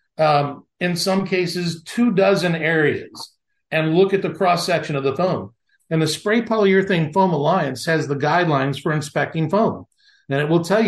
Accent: American